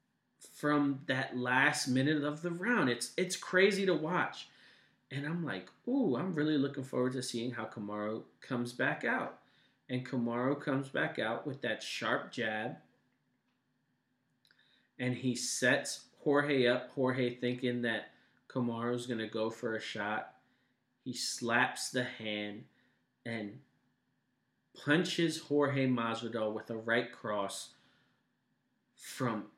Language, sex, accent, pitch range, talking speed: English, male, American, 115-135 Hz, 130 wpm